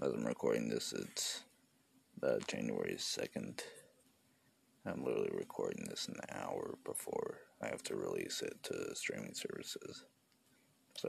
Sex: male